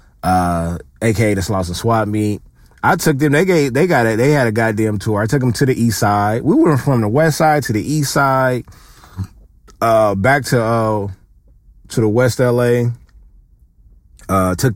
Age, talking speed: 30-49, 190 wpm